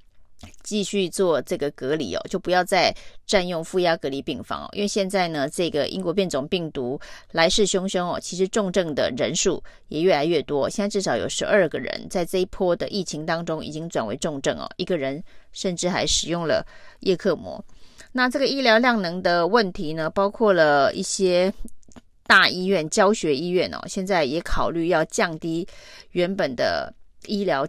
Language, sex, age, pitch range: Chinese, female, 30-49, 165-205 Hz